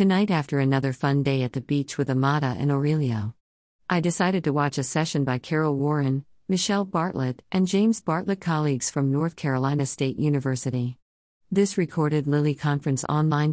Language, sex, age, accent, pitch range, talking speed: English, female, 50-69, American, 130-155 Hz, 165 wpm